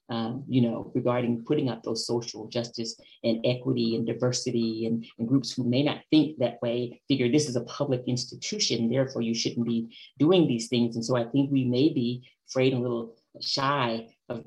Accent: American